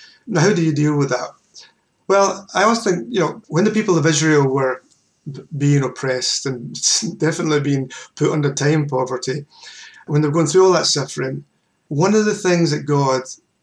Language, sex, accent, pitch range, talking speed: English, male, British, 140-185 Hz, 185 wpm